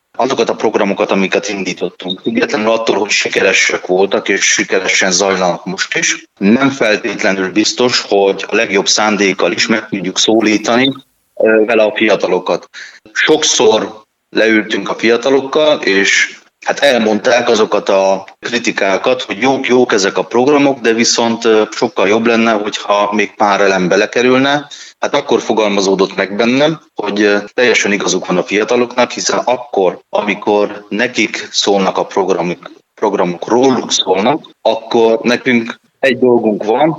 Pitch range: 100-125 Hz